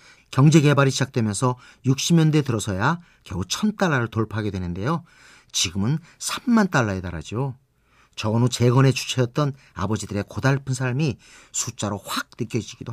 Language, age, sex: Korean, 40-59, male